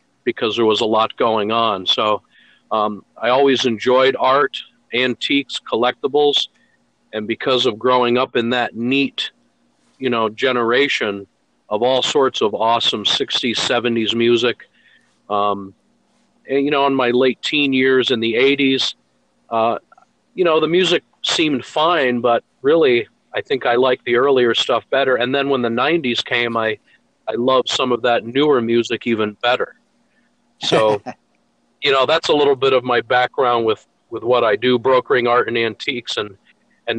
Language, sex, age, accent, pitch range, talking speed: English, male, 50-69, American, 115-140 Hz, 160 wpm